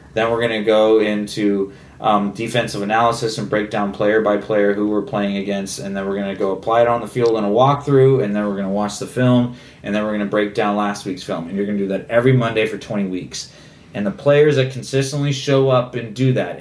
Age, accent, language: 20-39, American, English